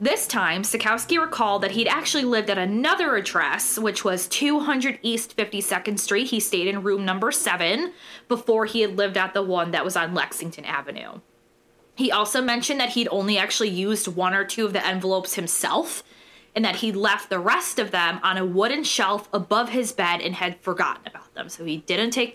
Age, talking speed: 20-39, 200 wpm